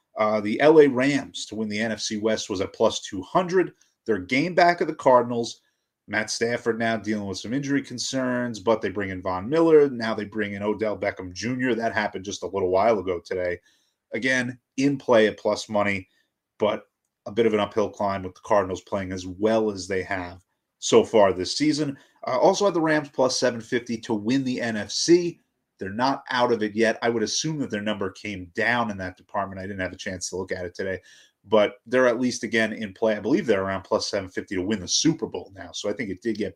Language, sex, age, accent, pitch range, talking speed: English, male, 30-49, American, 100-125 Hz, 225 wpm